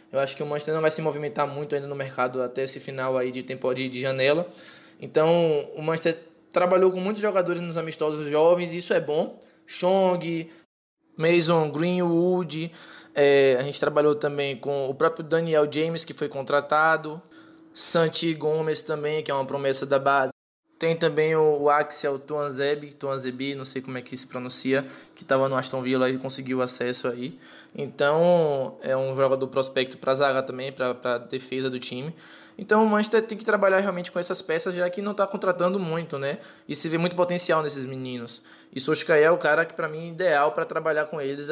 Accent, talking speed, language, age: Brazilian, 190 wpm, Portuguese, 20-39